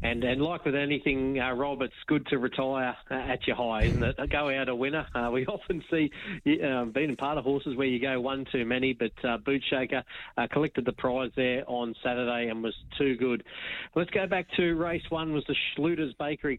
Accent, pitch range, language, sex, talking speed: Australian, 125-145 Hz, English, male, 225 wpm